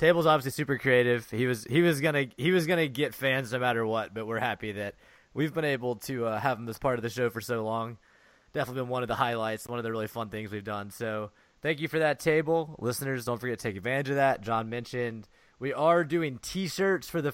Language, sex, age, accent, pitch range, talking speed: English, male, 20-39, American, 115-145 Hz, 250 wpm